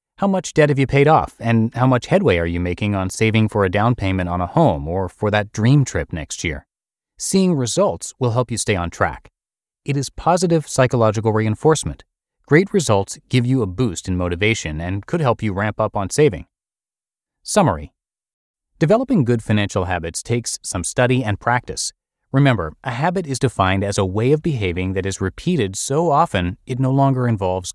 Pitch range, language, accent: 95-140 Hz, English, American